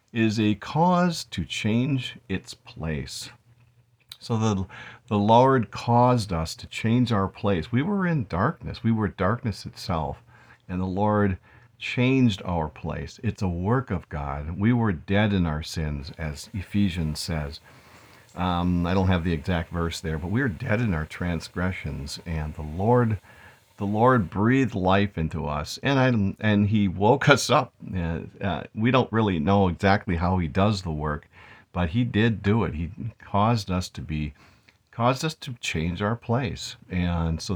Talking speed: 170 wpm